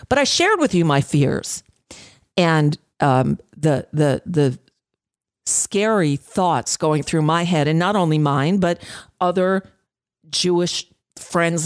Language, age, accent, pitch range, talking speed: English, 50-69, American, 145-190 Hz, 135 wpm